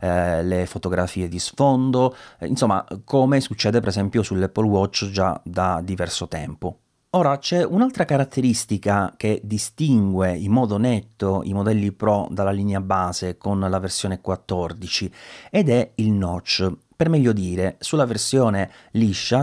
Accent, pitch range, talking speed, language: native, 95-125 Hz, 135 wpm, Italian